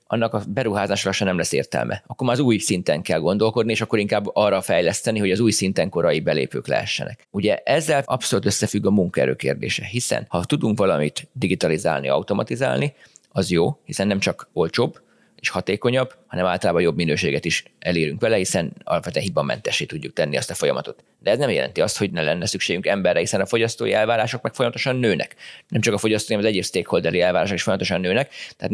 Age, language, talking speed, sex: 30-49, Hungarian, 190 wpm, male